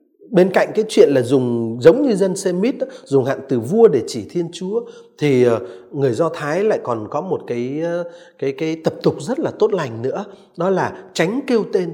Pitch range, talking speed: 155-225 Hz, 205 wpm